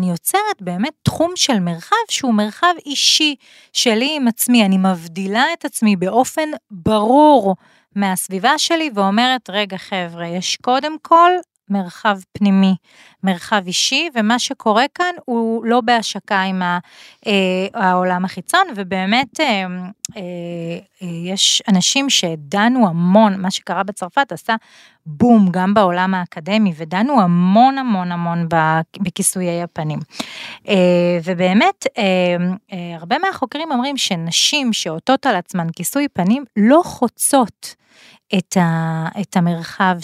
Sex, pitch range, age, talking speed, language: female, 180-245 Hz, 30-49, 110 wpm, Hebrew